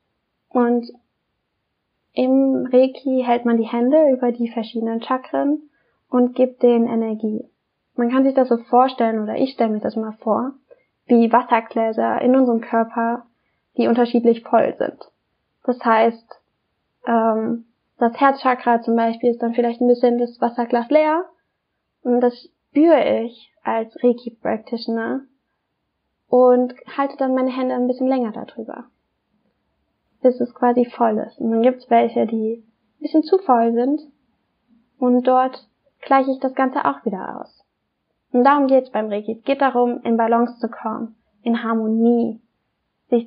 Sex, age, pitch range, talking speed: female, 10-29, 225-255 Hz, 150 wpm